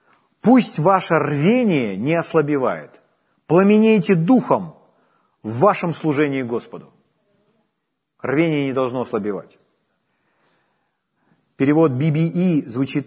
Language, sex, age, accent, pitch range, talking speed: Ukrainian, male, 40-59, native, 135-185 Hz, 85 wpm